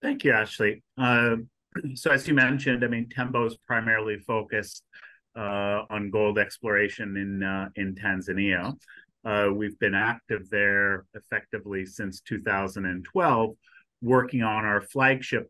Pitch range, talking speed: 100-120 Hz, 130 wpm